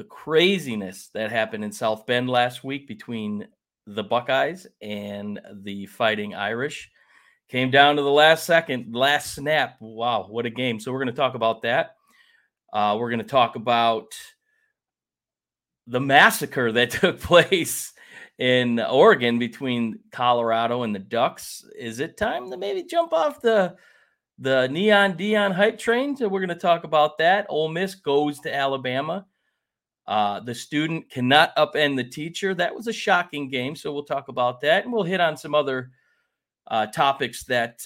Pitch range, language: 115-155 Hz, English